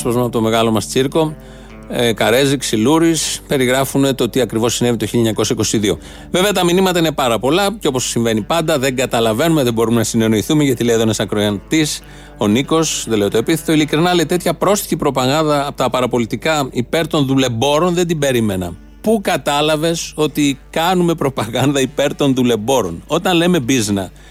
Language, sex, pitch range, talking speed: Greek, male, 135-175 Hz, 160 wpm